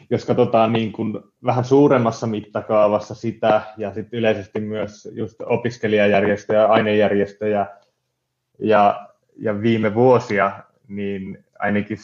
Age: 20-39